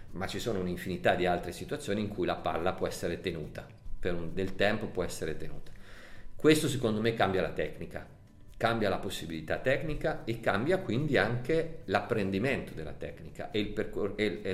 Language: Italian